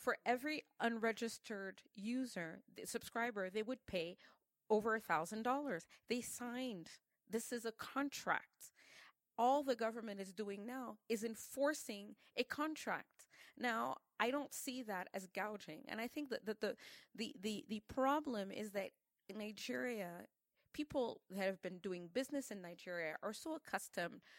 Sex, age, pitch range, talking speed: female, 30-49, 190-245 Hz, 145 wpm